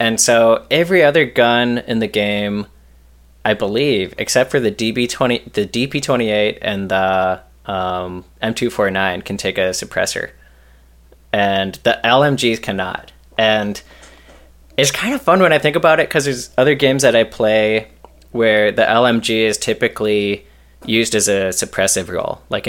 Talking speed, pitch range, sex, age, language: 150 wpm, 90-120 Hz, male, 20-39, English